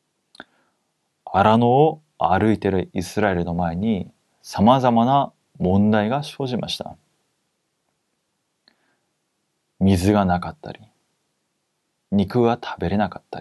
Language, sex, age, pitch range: Korean, male, 30-49, 95-125 Hz